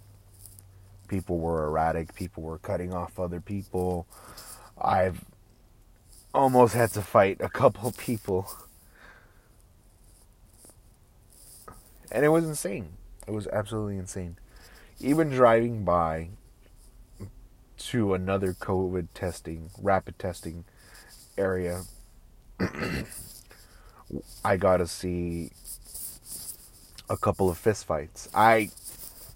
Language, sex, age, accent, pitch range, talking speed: English, male, 30-49, American, 85-115 Hz, 90 wpm